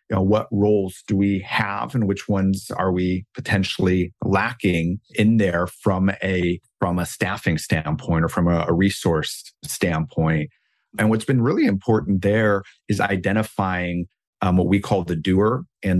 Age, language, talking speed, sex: 40-59, English, 160 wpm, male